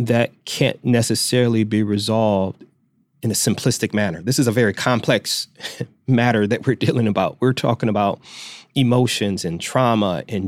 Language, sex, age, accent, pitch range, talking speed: English, male, 30-49, American, 105-125 Hz, 150 wpm